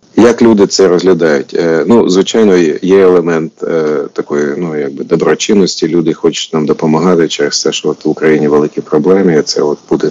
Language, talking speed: Ukrainian, 170 wpm